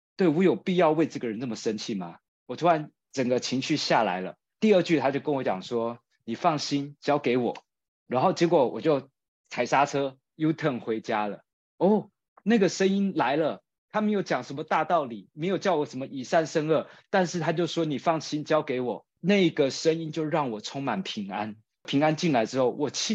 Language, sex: Chinese, male